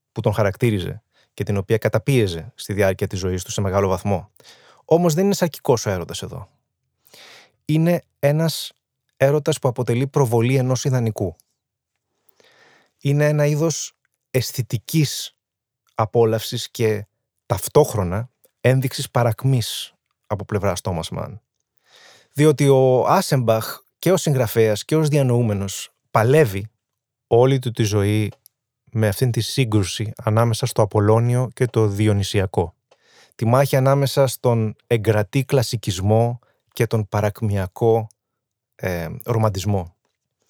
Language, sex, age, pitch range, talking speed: Greek, male, 20-39, 105-130 Hz, 115 wpm